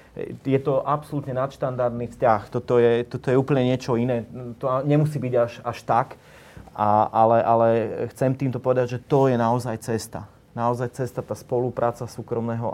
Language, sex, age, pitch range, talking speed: Slovak, male, 30-49, 110-125 Hz, 160 wpm